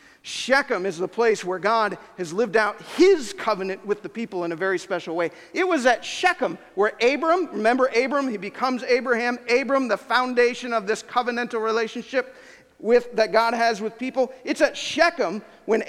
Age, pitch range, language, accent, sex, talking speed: 40-59, 185-245 Hz, English, American, male, 180 wpm